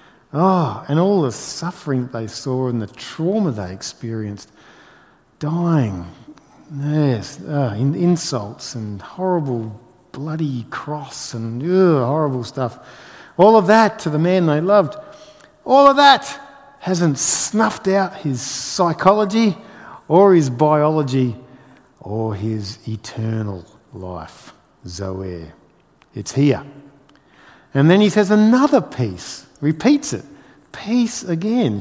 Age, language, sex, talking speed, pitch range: 50-69, English, male, 115 wpm, 120-175 Hz